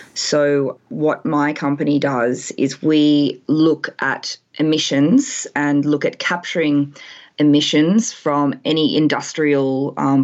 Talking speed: 110 wpm